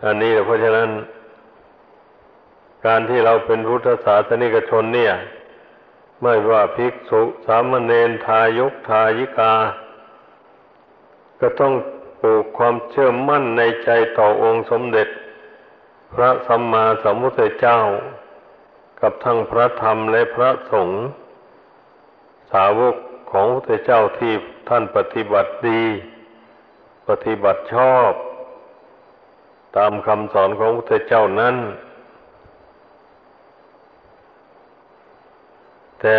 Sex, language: male, Thai